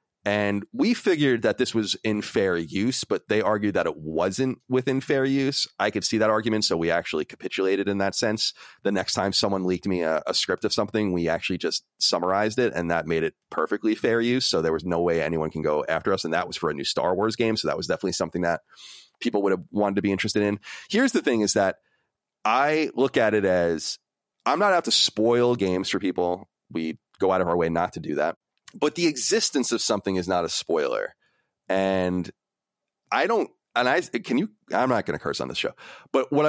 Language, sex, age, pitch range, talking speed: English, male, 30-49, 85-115 Hz, 230 wpm